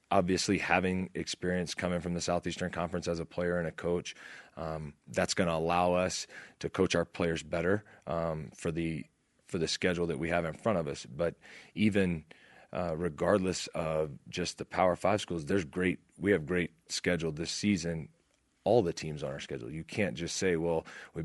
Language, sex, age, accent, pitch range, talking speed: English, male, 30-49, American, 85-95 Hz, 190 wpm